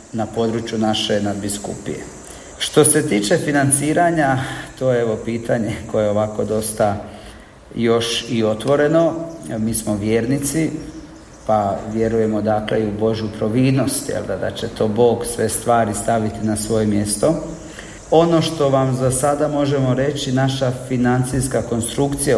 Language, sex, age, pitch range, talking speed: Croatian, male, 40-59, 110-135 Hz, 135 wpm